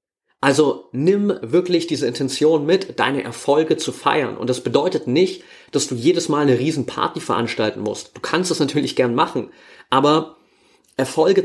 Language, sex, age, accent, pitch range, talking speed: German, male, 30-49, German, 130-170 Hz, 155 wpm